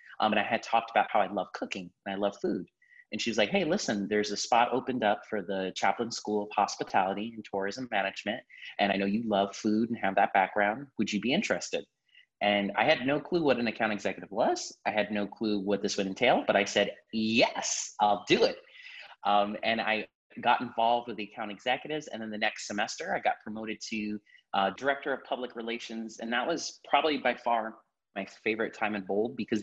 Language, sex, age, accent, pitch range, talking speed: English, male, 30-49, American, 105-125 Hz, 220 wpm